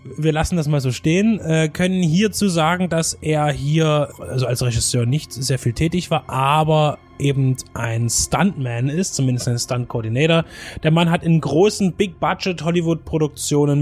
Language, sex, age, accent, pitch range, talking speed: German, male, 20-39, German, 130-165 Hz, 150 wpm